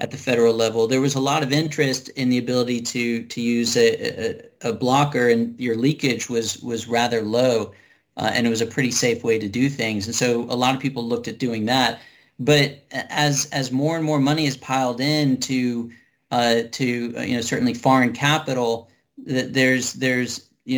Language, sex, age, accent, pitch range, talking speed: English, male, 40-59, American, 120-135 Hz, 205 wpm